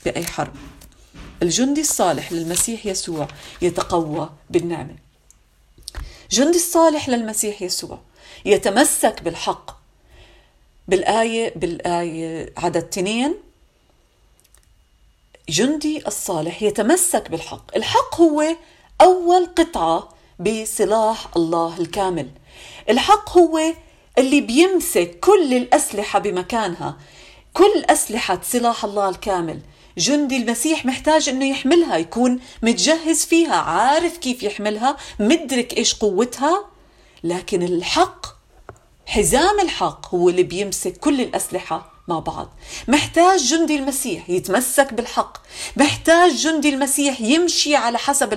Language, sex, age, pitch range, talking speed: Arabic, female, 40-59, 190-315 Hz, 95 wpm